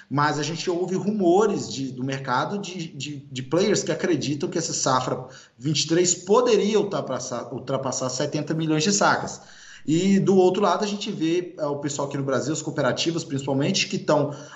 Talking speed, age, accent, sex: 175 wpm, 20-39, Brazilian, male